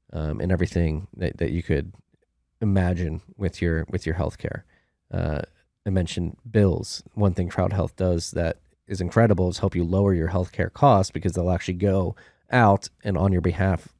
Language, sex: English, male